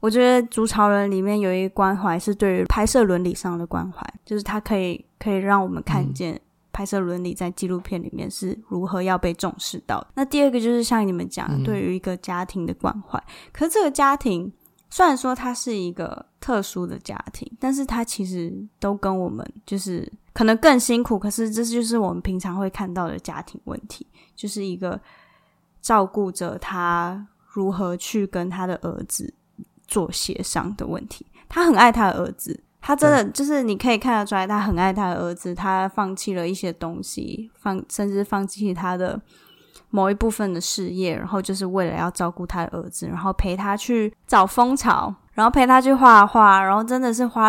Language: Chinese